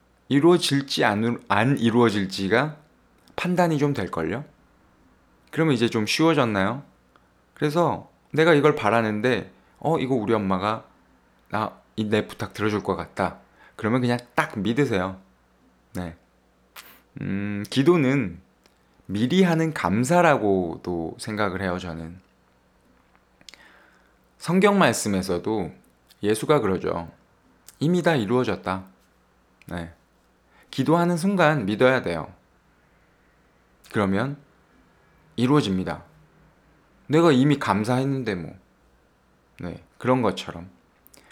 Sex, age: male, 20-39